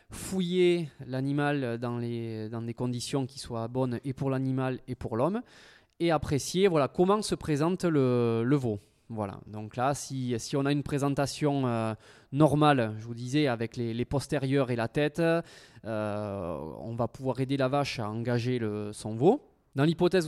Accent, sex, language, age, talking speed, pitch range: French, male, French, 20-39, 180 wpm, 115-145 Hz